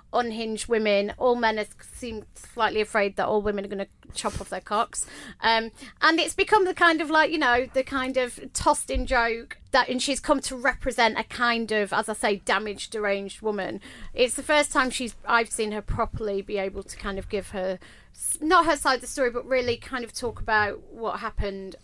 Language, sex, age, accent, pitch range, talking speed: English, female, 40-59, British, 205-250 Hz, 215 wpm